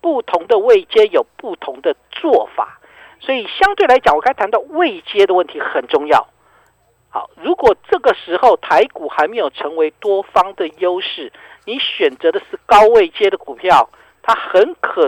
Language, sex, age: Chinese, male, 50-69